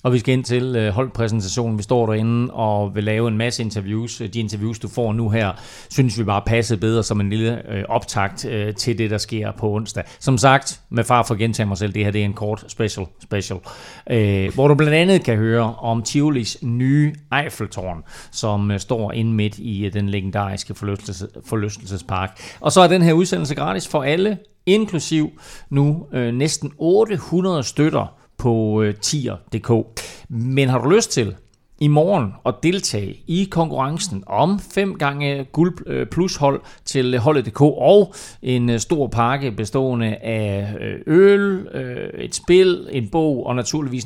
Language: Danish